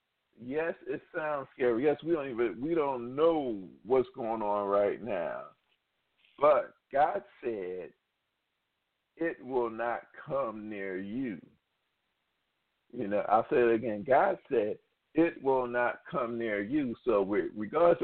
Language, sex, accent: English, male, American